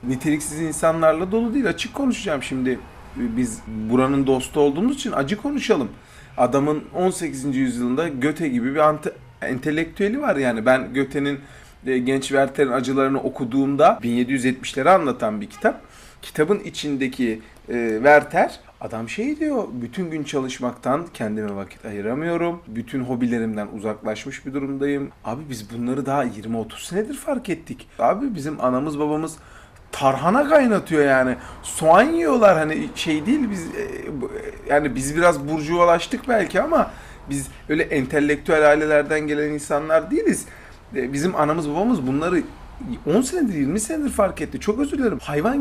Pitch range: 135-210 Hz